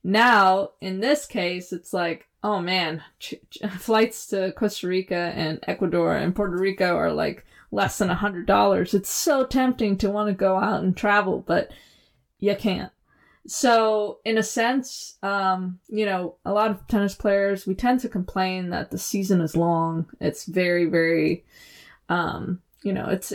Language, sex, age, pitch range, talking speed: English, female, 20-39, 180-215 Hz, 160 wpm